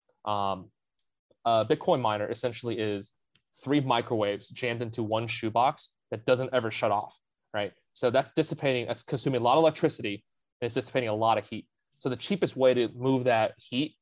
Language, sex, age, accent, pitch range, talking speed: English, male, 20-39, American, 110-130 Hz, 185 wpm